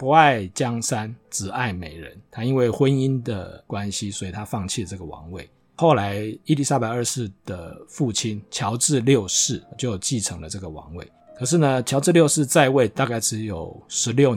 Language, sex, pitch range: Chinese, male, 100-135 Hz